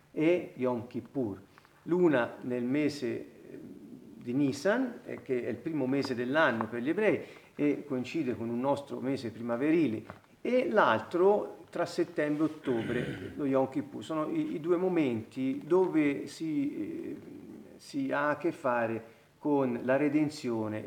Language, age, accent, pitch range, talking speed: Italian, 40-59, native, 125-175 Hz, 135 wpm